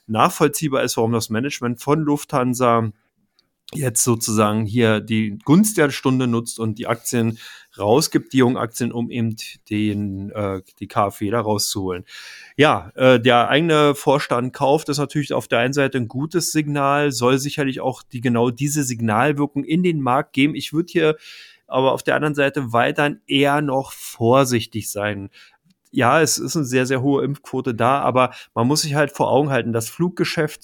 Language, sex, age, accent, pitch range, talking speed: German, male, 30-49, German, 115-145 Hz, 175 wpm